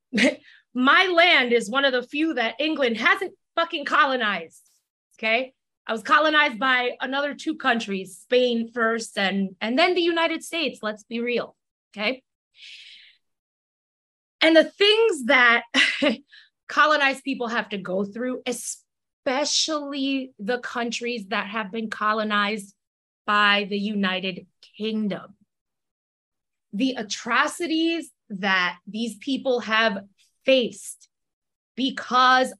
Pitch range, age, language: 220-300 Hz, 20-39, English